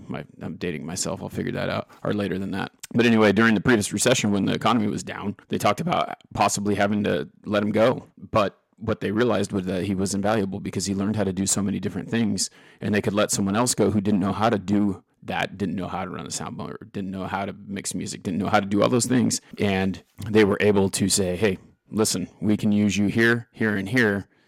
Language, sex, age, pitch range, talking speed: English, male, 30-49, 100-110 Hz, 250 wpm